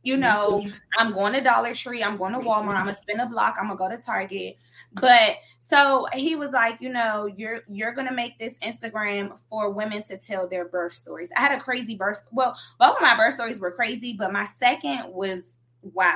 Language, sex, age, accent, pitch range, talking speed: English, female, 20-39, American, 195-240 Hz, 230 wpm